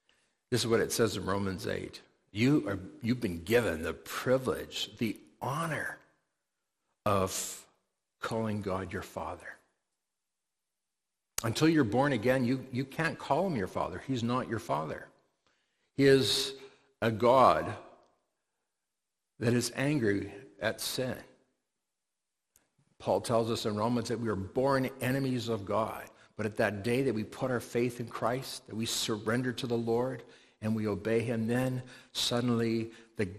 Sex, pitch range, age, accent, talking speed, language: male, 110-130 Hz, 50-69, American, 145 wpm, English